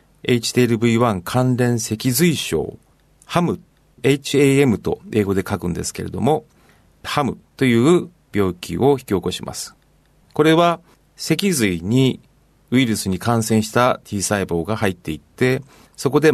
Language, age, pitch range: Japanese, 40-59, 100-140 Hz